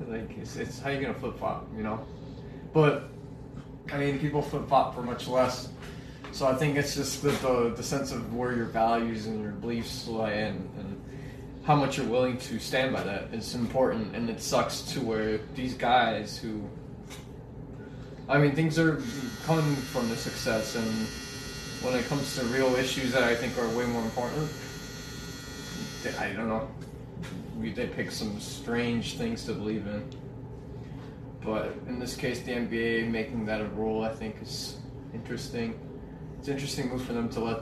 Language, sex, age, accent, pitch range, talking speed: English, male, 20-39, American, 115-135 Hz, 175 wpm